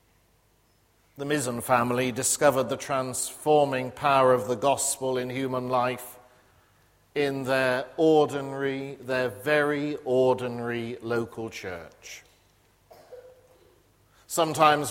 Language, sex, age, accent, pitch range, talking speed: English, male, 50-69, British, 125-150 Hz, 90 wpm